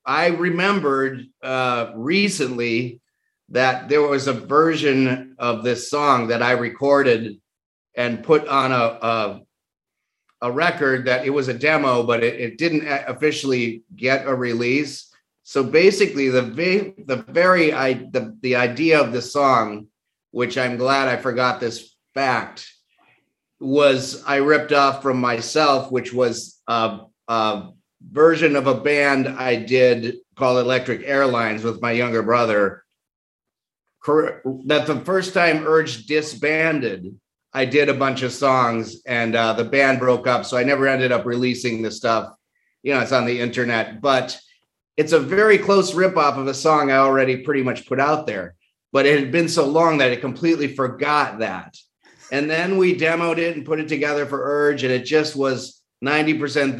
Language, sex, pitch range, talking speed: English, male, 120-150 Hz, 160 wpm